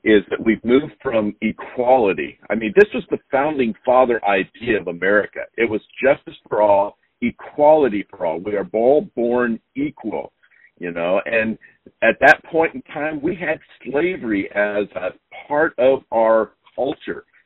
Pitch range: 105-145 Hz